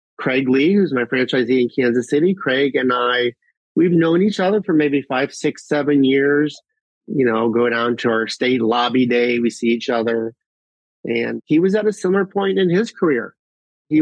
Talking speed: 195 wpm